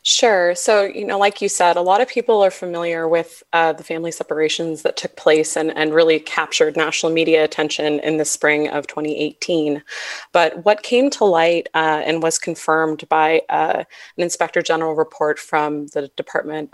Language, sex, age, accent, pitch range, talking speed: English, female, 20-39, American, 155-185 Hz, 185 wpm